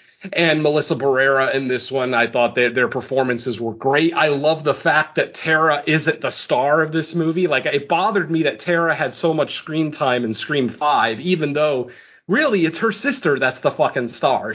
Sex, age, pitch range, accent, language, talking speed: male, 40-59, 130-165 Hz, American, English, 200 wpm